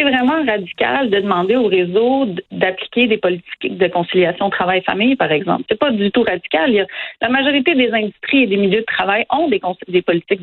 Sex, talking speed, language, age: female, 195 wpm, French, 40-59